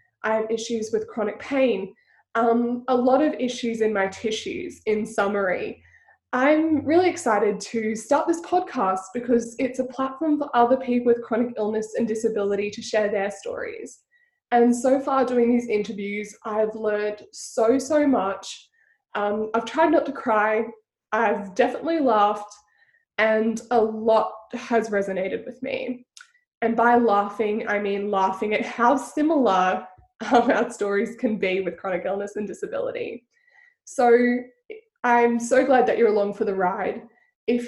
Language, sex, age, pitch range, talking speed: English, female, 20-39, 215-270 Hz, 155 wpm